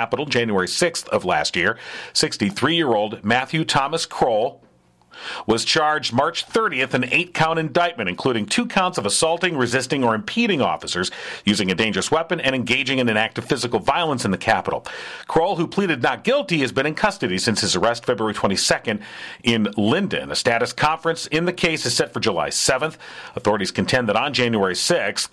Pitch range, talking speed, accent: 120-170 Hz, 175 wpm, American